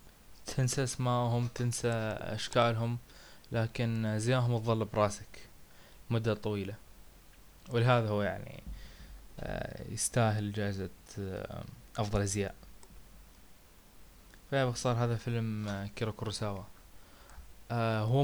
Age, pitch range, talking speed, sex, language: 20-39, 100-120 Hz, 80 wpm, male, Arabic